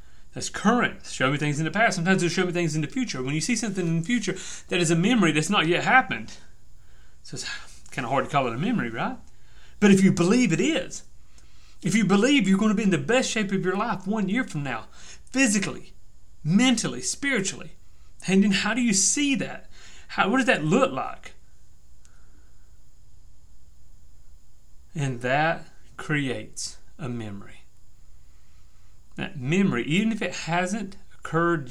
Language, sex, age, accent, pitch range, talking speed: English, male, 30-49, American, 130-195 Hz, 180 wpm